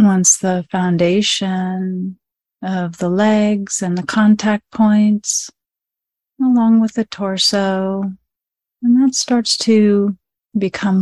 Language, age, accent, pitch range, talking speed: English, 30-49, American, 185-225 Hz, 105 wpm